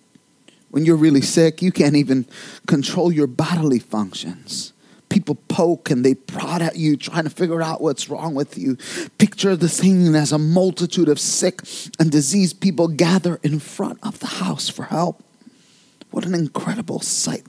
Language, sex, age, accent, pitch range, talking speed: English, male, 30-49, American, 175-265 Hz, 170 wpm